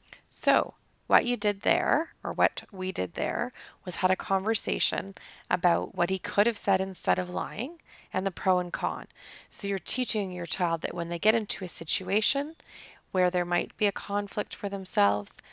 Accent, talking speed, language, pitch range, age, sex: American, 185 wpm, English, 185-235 Hz, 30-49, female